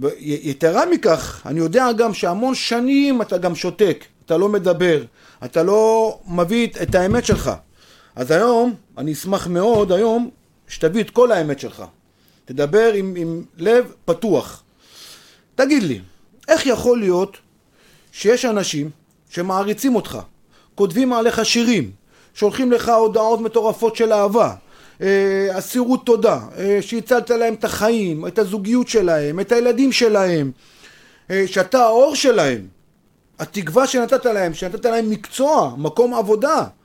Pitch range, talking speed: 175-240 Hz, 125 wpm